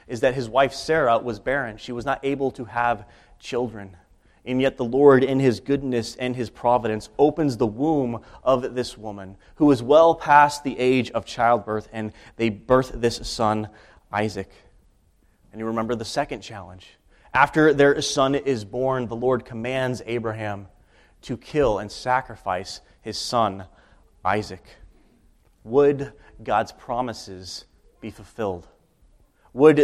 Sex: male